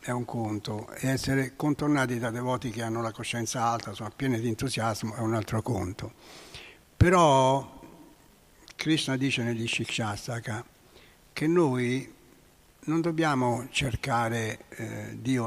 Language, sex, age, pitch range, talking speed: Italian, male, 60-79, 115-140 Hz, 130 wpm